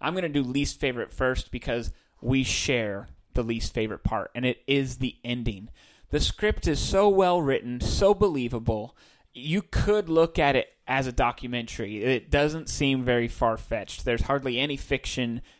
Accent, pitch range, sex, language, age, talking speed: American, 125-190 Hz, male, English, 30-49, 170 wpm